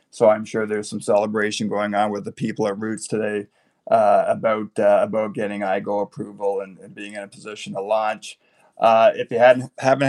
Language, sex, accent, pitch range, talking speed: English, male, American, 105-120 Hz, 200 wpm